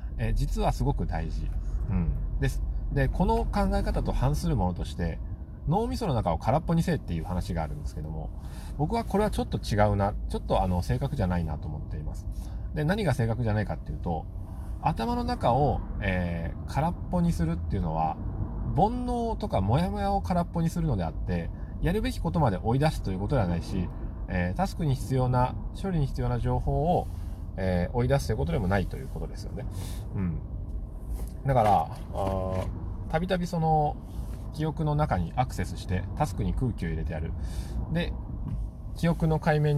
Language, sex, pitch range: Japanese, male, 85-120 Hz